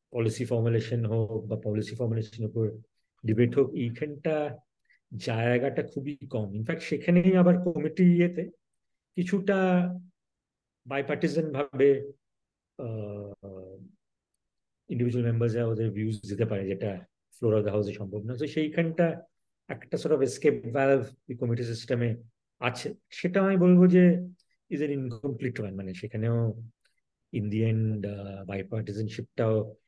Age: 50-69